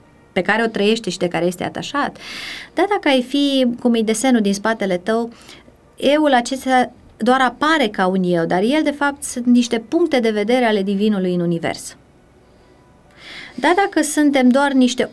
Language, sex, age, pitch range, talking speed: Romanian, female, 30-49, 210-280 Hz, 175 wpm